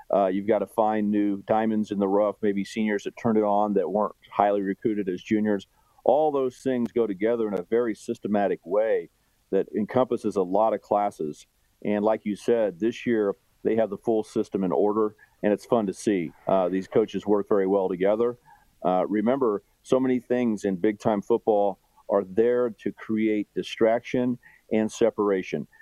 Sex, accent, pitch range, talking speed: male, American, 100-120 Hz, 180 wpm